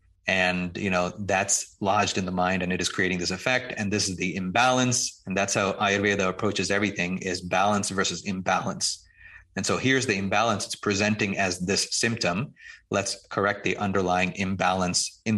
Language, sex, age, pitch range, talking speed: English, male, 30-49, 90-105 Hz, 175 wpm